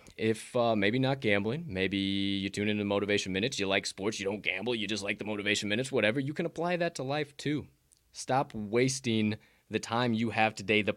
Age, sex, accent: 20-39, male, American